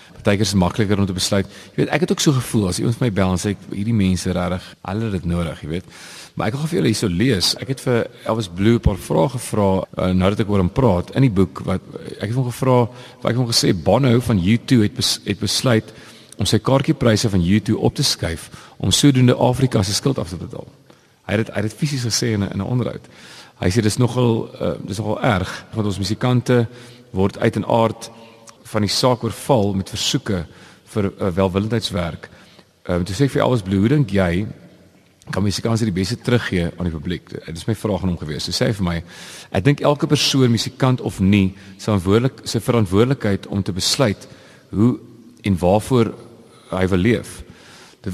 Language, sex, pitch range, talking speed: Dutch, male, 95-125 Hz, 215 wpm